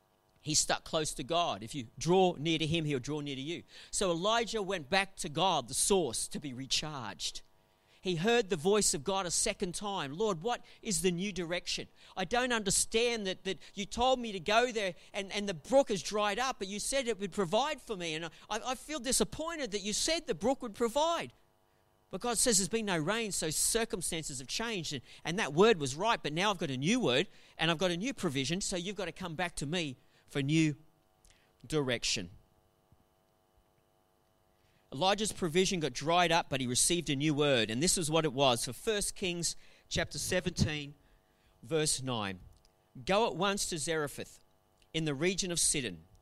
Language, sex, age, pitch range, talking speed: English, male, 40-59, 135-200 Hz, 205 wpm